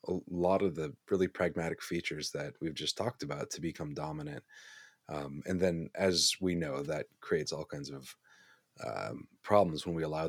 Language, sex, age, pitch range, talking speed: English, male, 30-49, 85-110 Hz, 180 wpm